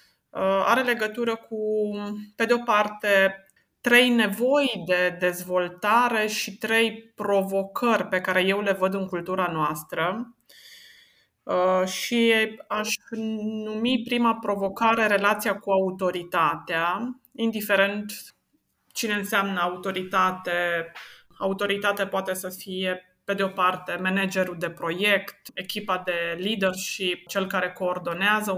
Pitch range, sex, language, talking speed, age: 185-215 Hz, female, Romanian, 105 wpm, 20-39